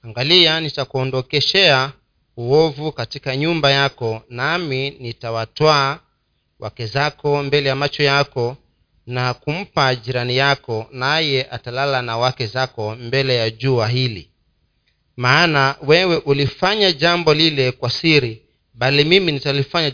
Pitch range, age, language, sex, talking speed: 125-155 Hz, 40-59, Swahili, male, 115 wpm